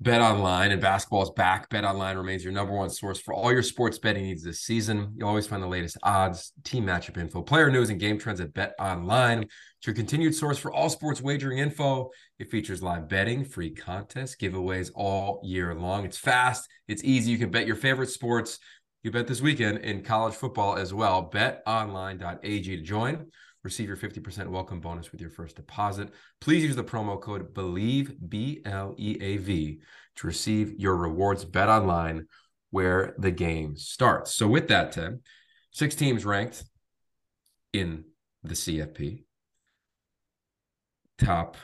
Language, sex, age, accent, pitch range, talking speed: English, male, 30-49, American, 90-115 Hz, 165 wpm